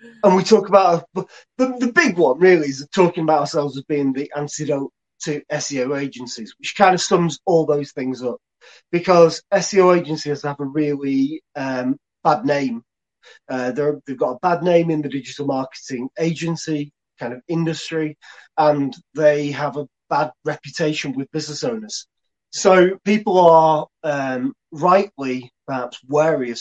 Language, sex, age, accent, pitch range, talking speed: English, male, 30-49, British, 135-175 Hz, 155 wpm